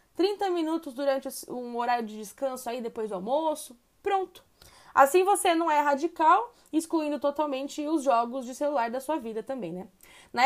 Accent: Brazilian